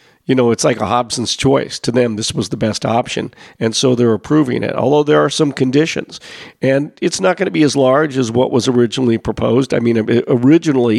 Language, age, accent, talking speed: English, 50-69, American, 220 wpm